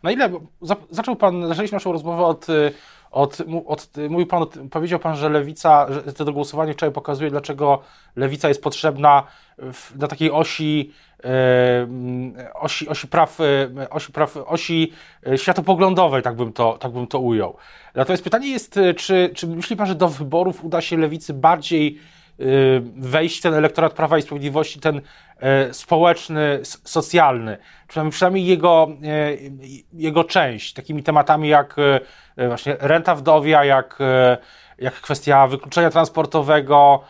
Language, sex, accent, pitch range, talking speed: Polish, male, native, 145-170 Hz, 130 wpm